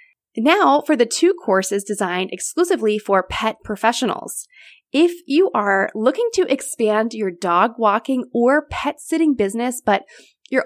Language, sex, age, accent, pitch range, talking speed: English, female, 20-39, American, 205-305 Hz, 140 wpm